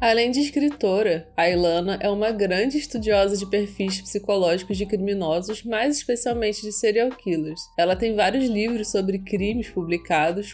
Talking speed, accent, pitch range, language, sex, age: 150 wpm, Brazilian, 185-235 Hz, Portuguese, female, 20-39